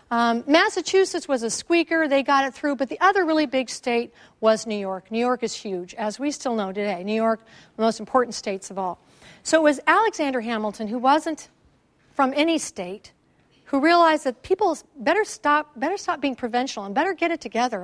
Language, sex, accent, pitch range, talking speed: English, female, American, 225-300 Hz, 200 wpm